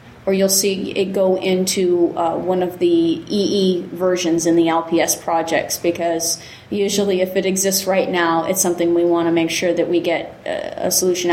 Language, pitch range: English, 170-200 Hz